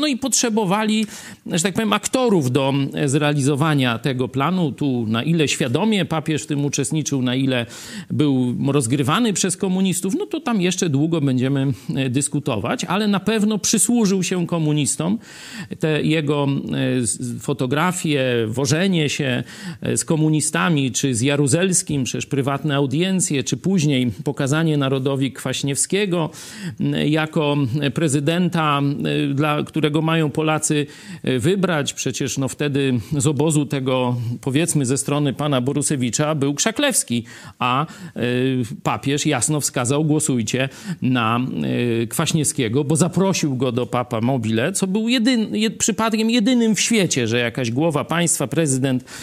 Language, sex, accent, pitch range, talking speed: Polish, male, native, 130-175 Hz, 125 wpm